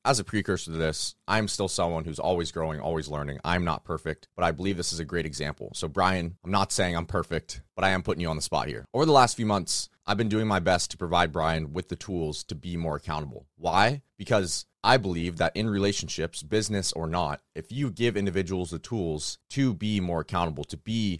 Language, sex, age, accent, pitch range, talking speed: English, male, 30-49, American, 80-105 Hz, 230 wpm